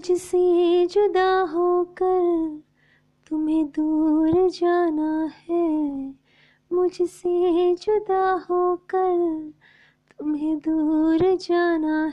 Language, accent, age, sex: Hindi, native, 20-39, female